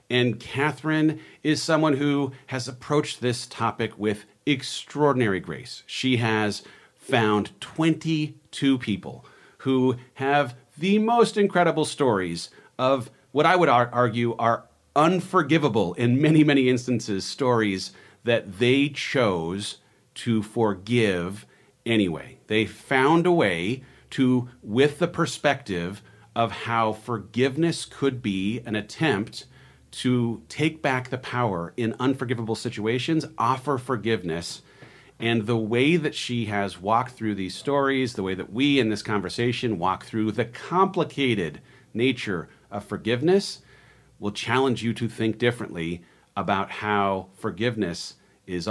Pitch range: 105-140 Hz